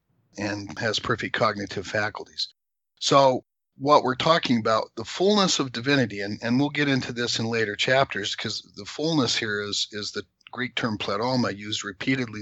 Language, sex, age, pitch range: English, male, 50-69, 110-135 Hz